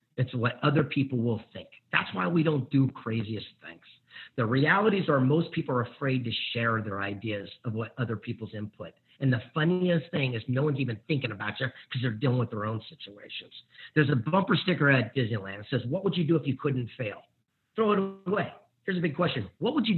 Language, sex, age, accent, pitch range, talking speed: English, male, 50-69, American, 120-155 Hz, 220 wpm